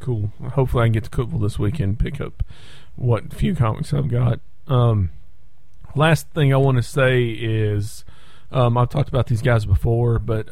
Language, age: English, 40-59